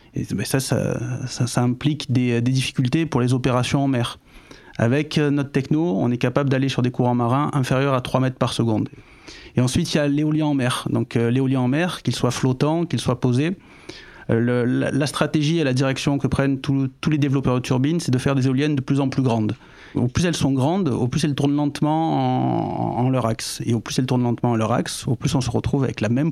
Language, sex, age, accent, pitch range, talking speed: French, male, 30-49, French, 125-145 Hz, 235 wpm